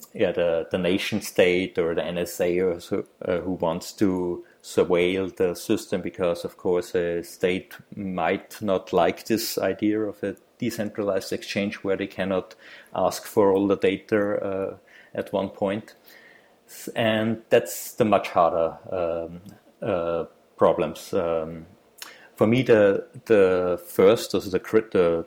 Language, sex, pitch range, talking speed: English, male, 90-115 Hz, 140 wpm